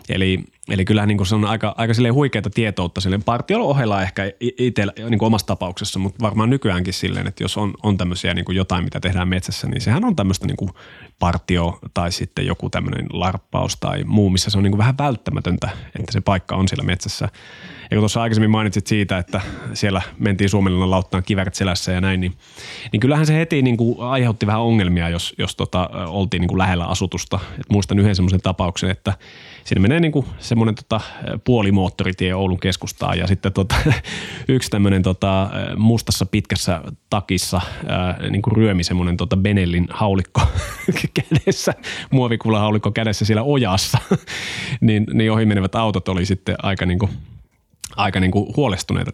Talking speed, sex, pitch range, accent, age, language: 160 wpm, male, 95-115 Hz, native, 30-49, Finnish